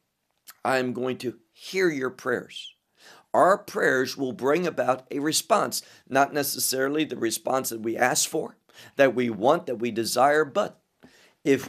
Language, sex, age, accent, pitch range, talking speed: English, male, 50-69, American, 120-175 Hz, 150 wpm